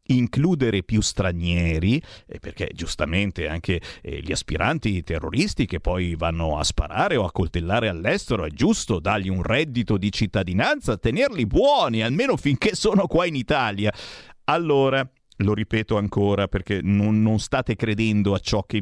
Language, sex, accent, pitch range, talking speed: Italian, male, native, 100-125 Hz, 145 wpm